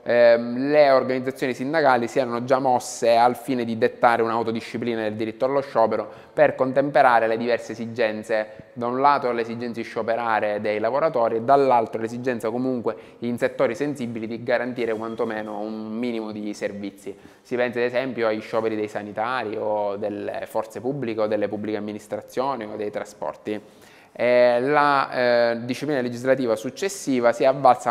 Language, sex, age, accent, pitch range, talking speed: Italian, male, 20-39, native, 110-125 Hz, 155 wpm